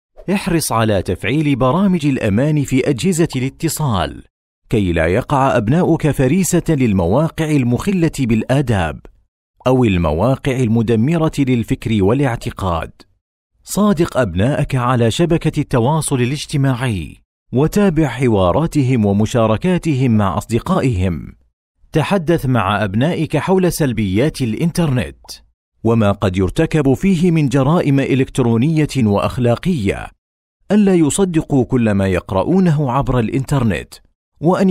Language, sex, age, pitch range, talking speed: Arabic, male, 40-59, 110-155 Hz, 95 wpm